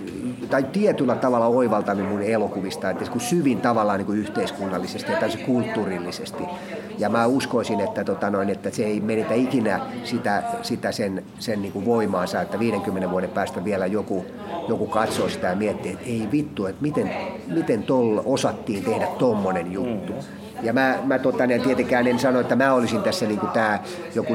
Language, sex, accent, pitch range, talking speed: Finnish, male, native, 110-140 Hz, 145 wpm